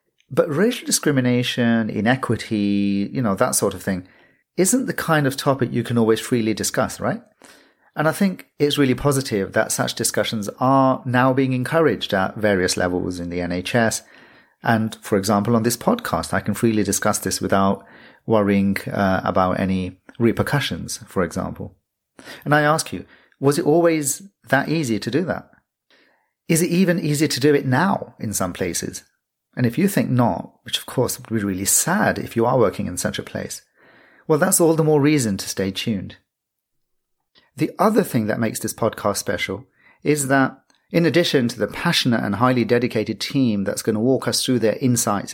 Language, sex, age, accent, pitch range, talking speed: English, male, 40-59, British, 105-145 Hz, 185 wpm